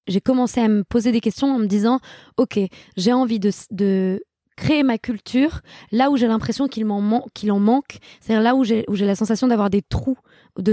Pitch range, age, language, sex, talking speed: 200-245 Hz, 20-39, French, female, 225 wpm